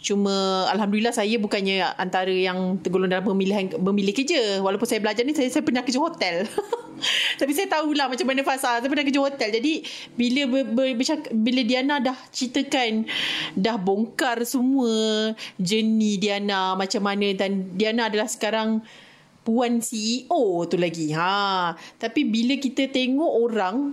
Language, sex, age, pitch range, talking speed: Malay, female, 30-49, 195-265 Hz, 145 wpm